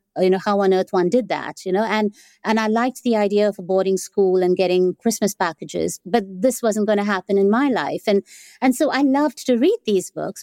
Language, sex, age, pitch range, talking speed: English, female, 50-69, 200-255 Hz, 240 wpm